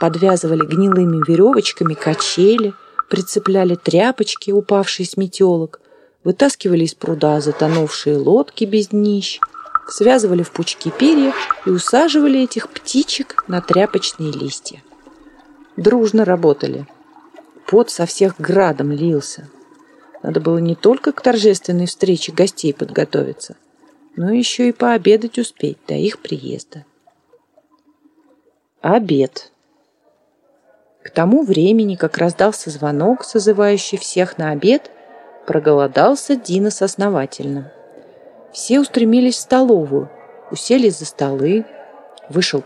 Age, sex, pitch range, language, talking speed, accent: 40-59, female, 170-250 Hz, Russian, 105 wpm, native